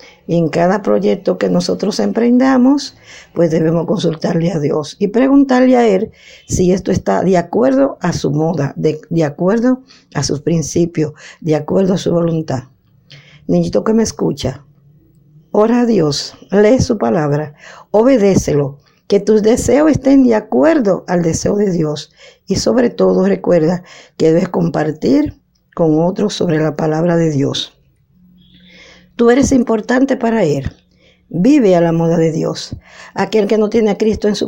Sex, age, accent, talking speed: female, 50-69, American, 155 wpm